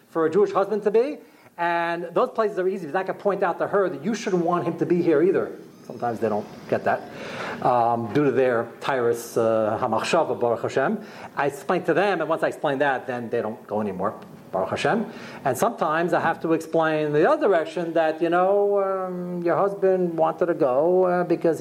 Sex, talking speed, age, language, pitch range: male, 210 wpm, 40-59, English, 165-215 Hz